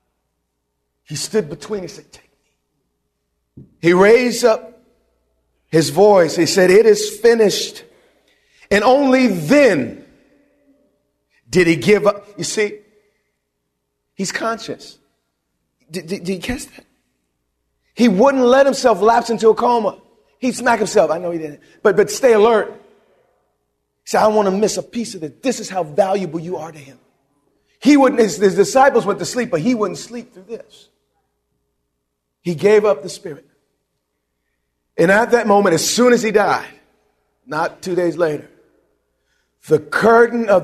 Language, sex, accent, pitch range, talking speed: English, male, American, 160-235 Hz, 160 wpm